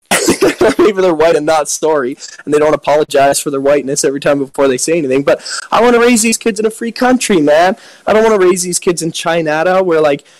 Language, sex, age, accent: English, male, 20-39, American